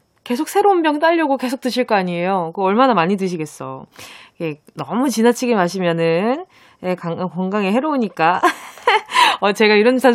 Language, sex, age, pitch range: Korean, female, 20-39, 205-310 Hz